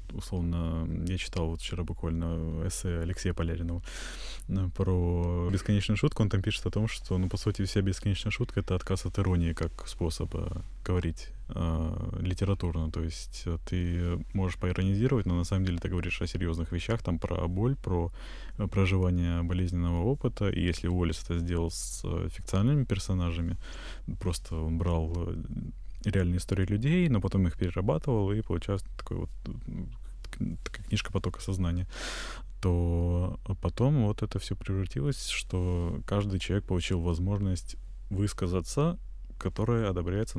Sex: male